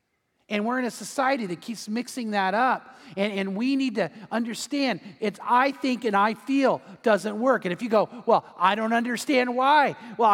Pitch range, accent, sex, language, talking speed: 200-265 Hz, American, male, English, 195 wpm